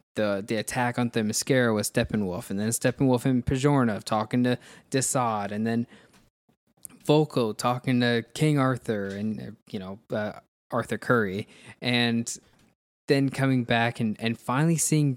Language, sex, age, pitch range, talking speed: English, male, 20-39, 110-140 Hz, 145 wpm